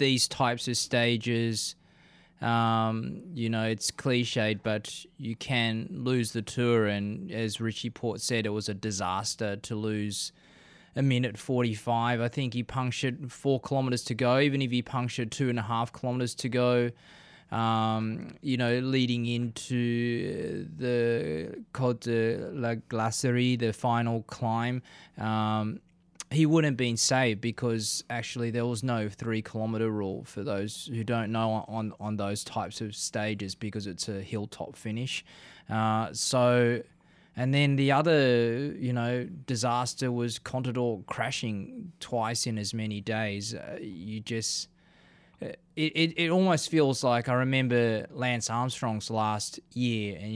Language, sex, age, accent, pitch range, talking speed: English, male, 20-39, Australian, 110-125 Hz, 145 wpm